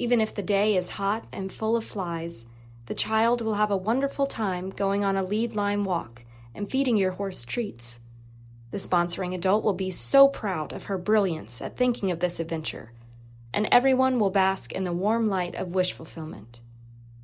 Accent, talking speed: American, 185 wpm